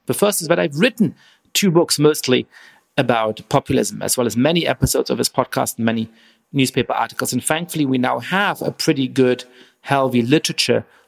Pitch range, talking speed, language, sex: 120-155 Hz, 180 wpm, English, male